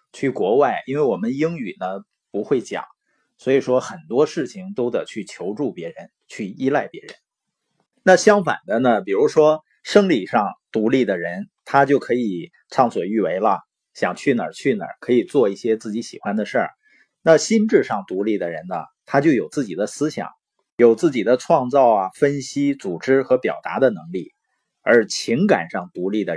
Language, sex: Chinese, male